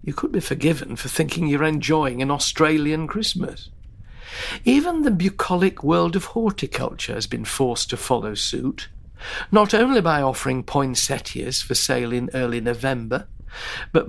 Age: 50-69